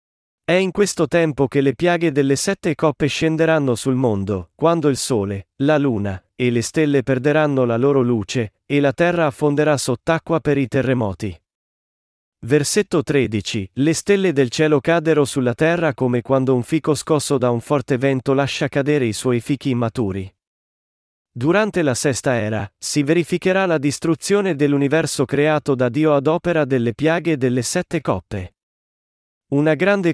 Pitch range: 125-160 Hz